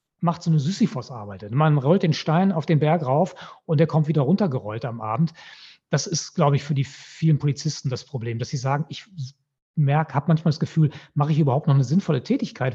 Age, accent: 30-49, German